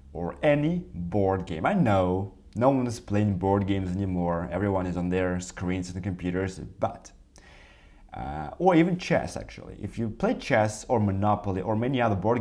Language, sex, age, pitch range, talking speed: English, male, 30-49, 90-115 Hz, 180 wpm